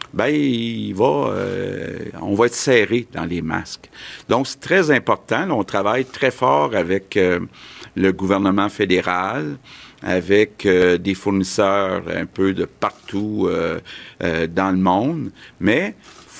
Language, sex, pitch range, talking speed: French, male, 95-115 Hz, 145 wpm